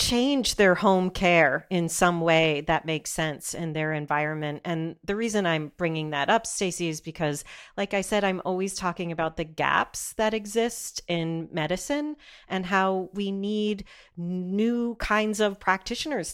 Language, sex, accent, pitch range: English, female, American, 165-200 Hz